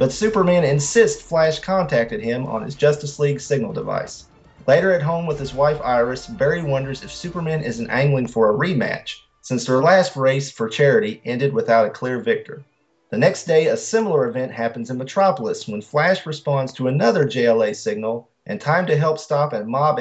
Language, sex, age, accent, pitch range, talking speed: English, male, 40-59, American, 130-170 Hz, 185 wpm